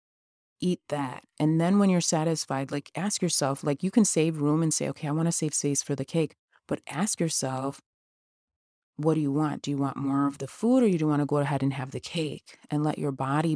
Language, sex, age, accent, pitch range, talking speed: English, female, 30-49, American, 140-170 Hz, 245 wpm